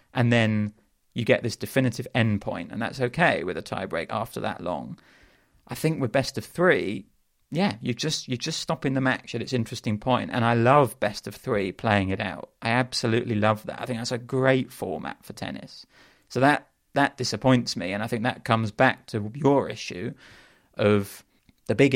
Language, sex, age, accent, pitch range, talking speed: English, male, 30-49, British, 105-130 Hz, 205 wpm